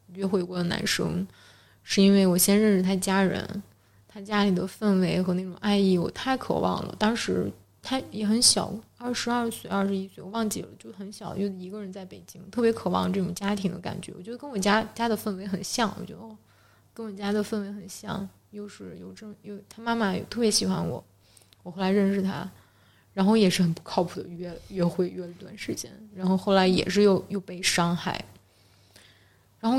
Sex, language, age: female, Chinese, 20-39